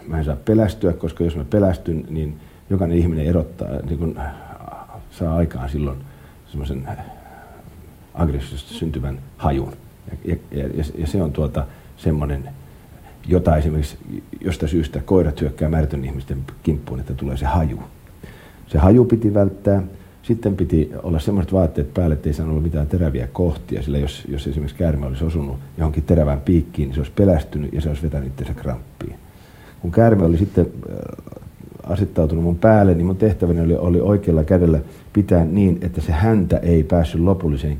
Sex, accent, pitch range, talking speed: male, native, 75-90 Hz, 160 wpm